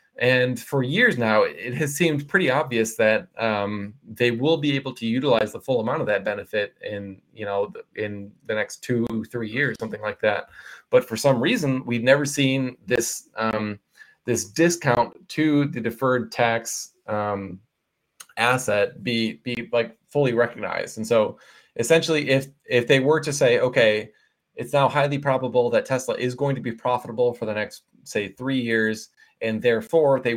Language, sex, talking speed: English, male, 170 wpm